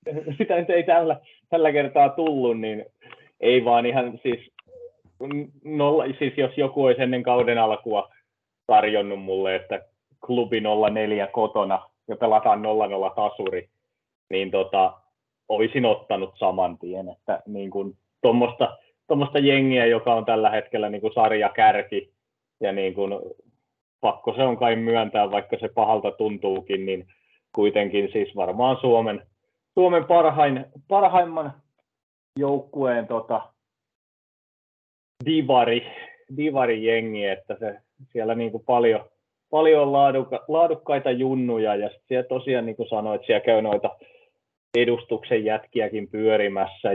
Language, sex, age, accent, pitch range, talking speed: Finnish, male, 30-49, native, 105-140 Hz, 105 wpm